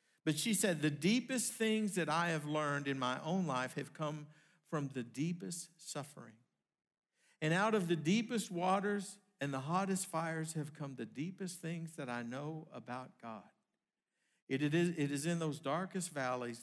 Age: 50-69